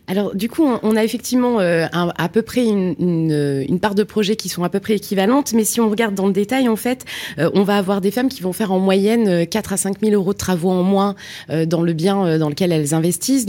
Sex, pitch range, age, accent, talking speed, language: female, 185-230 Hz, 20-39, French, 265 wpm, French